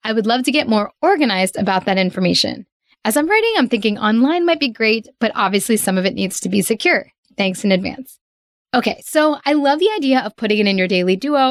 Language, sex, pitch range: English, female, 195-265 Hz